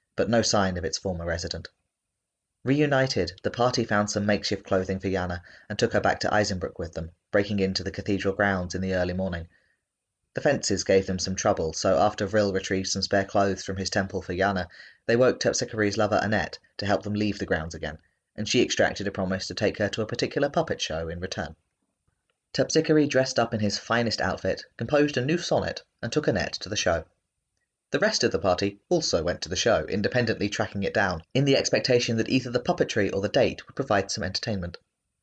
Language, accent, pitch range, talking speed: English, British, 95-115 Hz, 210 wpm